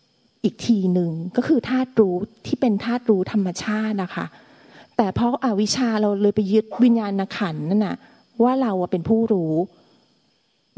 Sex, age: female, 30-49